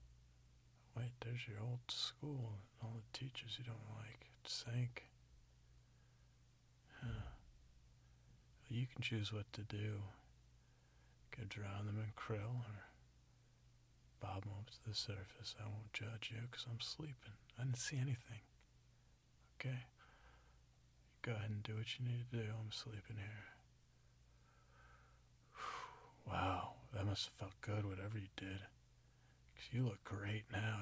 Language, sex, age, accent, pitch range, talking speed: English, male, 40-59, American, 100-120 Hz, 140 wpm